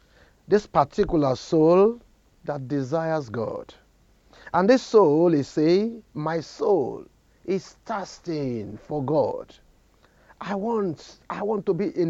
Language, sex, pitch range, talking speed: English, male, 145-195 Hz, 115 wpm